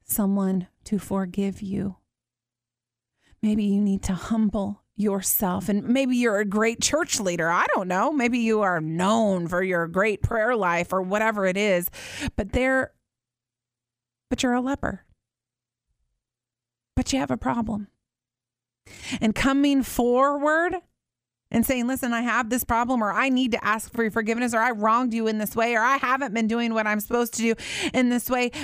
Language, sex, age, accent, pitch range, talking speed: English, female, 30-49, American, 205-320 Hz, 170 wpm